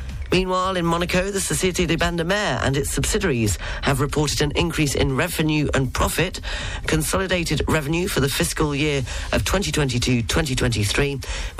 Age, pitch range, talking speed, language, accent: 40-59, 115-165 Hz, 140 wpm, English, British